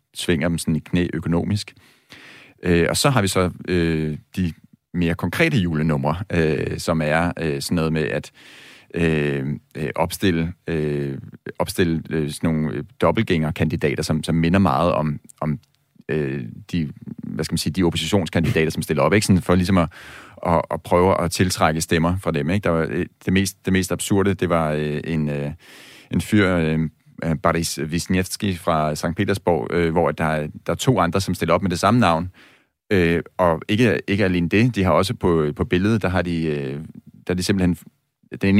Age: 40-59